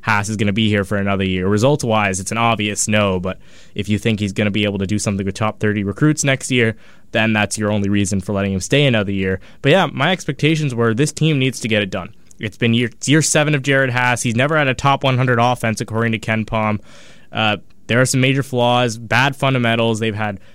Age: 20-39